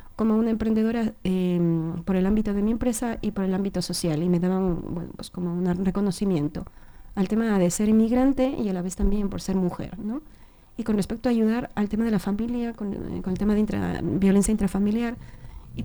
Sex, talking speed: female, 220 wpm